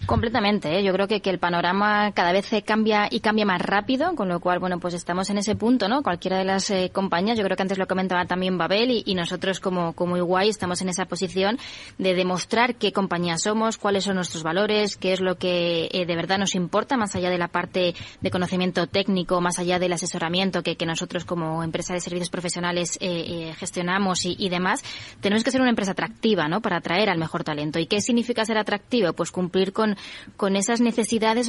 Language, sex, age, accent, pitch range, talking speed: Spanish, female, 20-39, Spanish, 180-205 Hz, 220 wpm